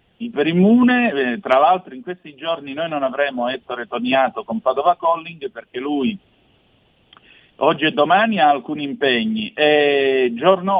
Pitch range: 120-195 Hz